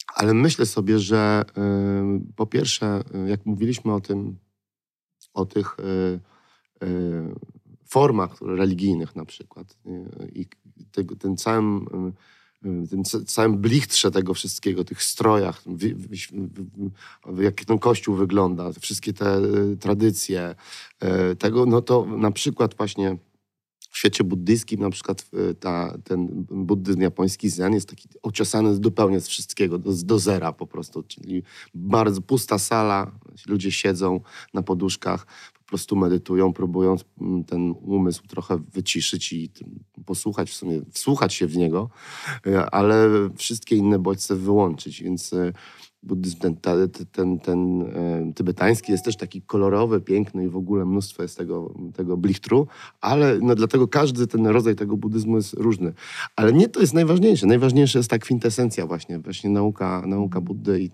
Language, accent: Polish, native